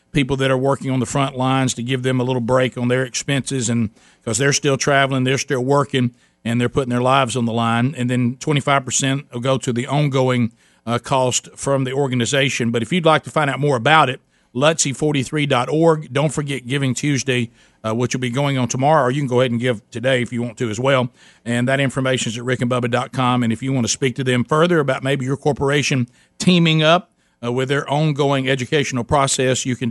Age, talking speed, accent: 50-69, 225 wpm, American